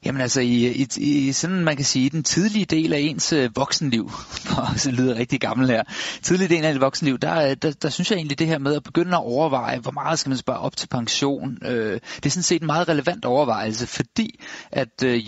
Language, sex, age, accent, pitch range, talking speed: Danish, male, 30-49, native, 120-150 Hz, 215 wpm